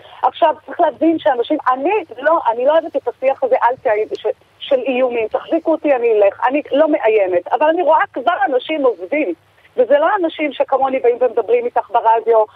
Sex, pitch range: female, 240-325 Hz